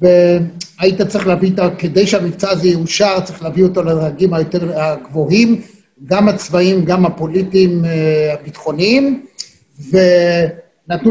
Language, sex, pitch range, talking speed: Hebrew, male, 185-230 Hz, 105 wpm